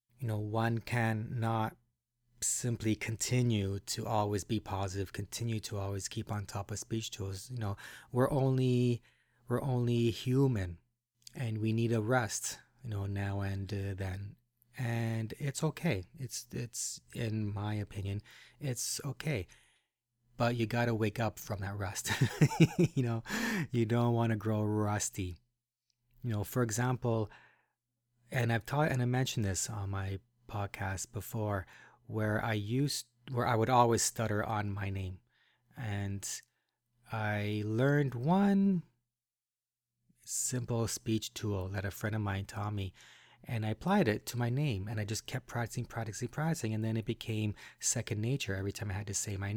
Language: English